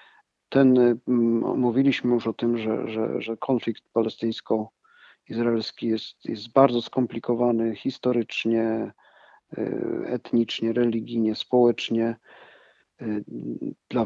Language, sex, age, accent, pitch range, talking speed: Polish, male, 50-69, native, 115-125 Hz, 80 wpm